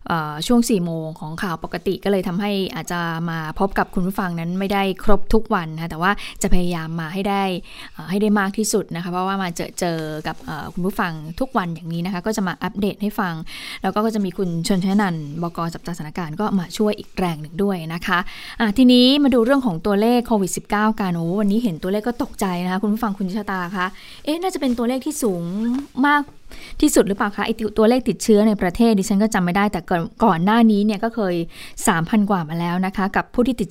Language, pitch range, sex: Thai, 180-220 Hz, female